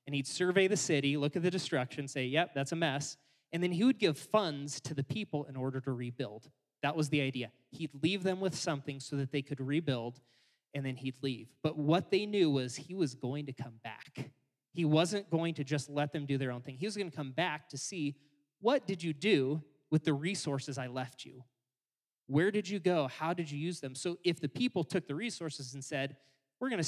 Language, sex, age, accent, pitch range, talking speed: English, male, 20-39, American, 135-170 Hz, 235 wpm